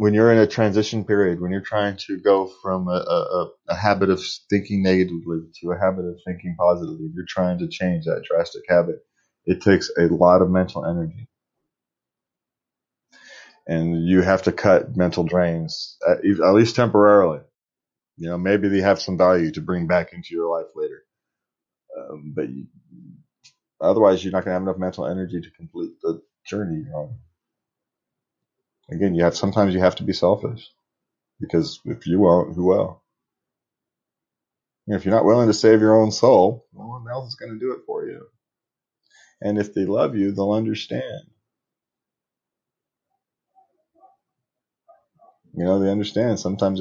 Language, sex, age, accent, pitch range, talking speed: English, male, 30-49, American, 90-145 Hz, 165 wpm